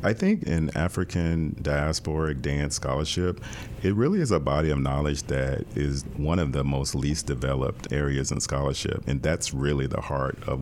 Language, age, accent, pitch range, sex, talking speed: English, 40-59, American, 70-80 Hz, male, 175 wpm